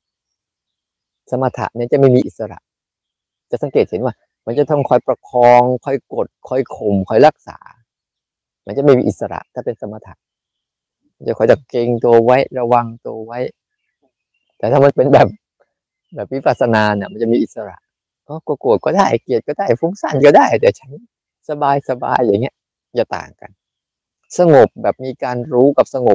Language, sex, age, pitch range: Thai, male, 20-39, 115-140 Hz